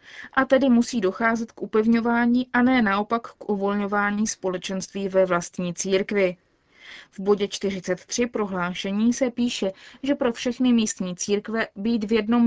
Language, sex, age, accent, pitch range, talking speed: Czech, female, 20-39, native, 195-235 Hz, 140 wpm